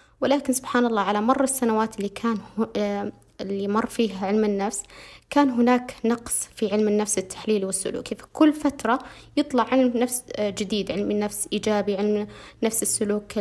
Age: 20-39